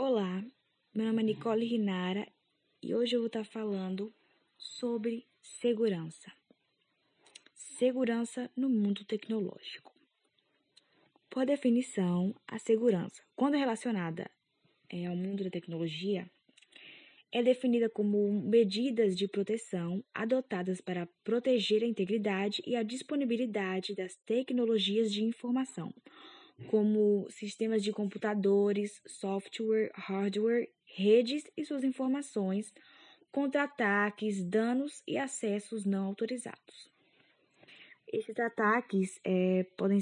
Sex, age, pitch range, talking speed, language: female, 10-29, 190-235 Hz, 100 wpm, Portuguese